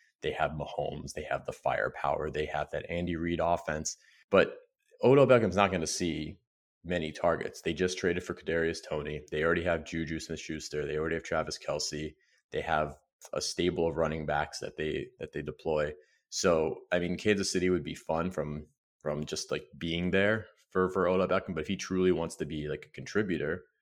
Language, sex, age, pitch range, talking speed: English, male, 30-49, 75-90 Hz, 195 wpm